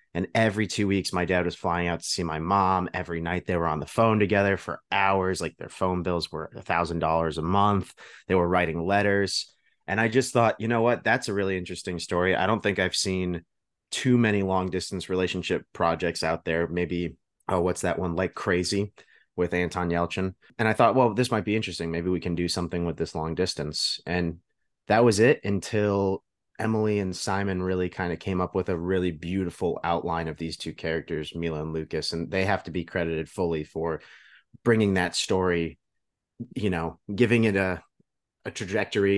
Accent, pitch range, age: American, 85-105 Hz, 30-49